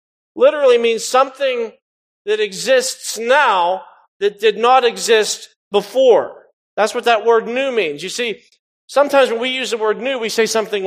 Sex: male